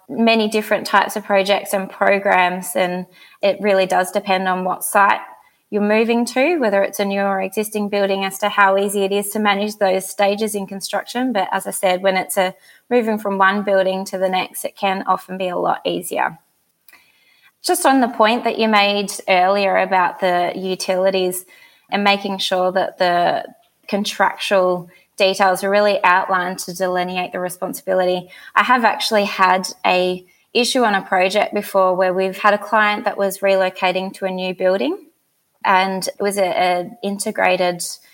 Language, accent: English, Australian